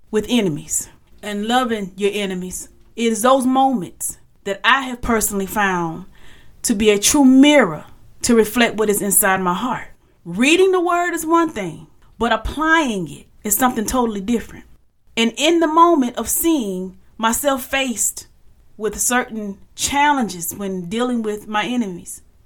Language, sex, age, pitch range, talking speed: English, female, 30-49, 200-265 Hz, 145 wpm